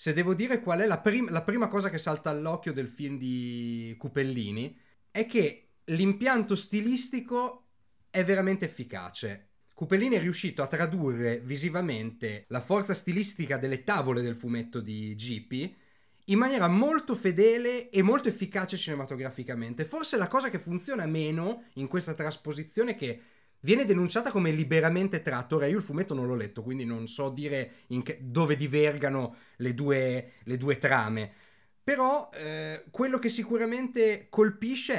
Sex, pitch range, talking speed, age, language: male, 130-210 Hz, 155 wpm, 30-49, Italian